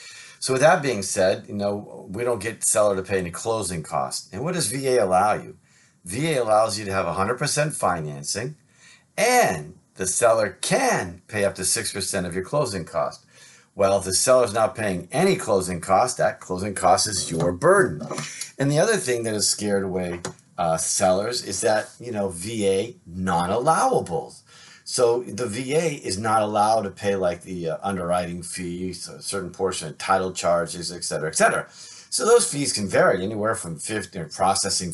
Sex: male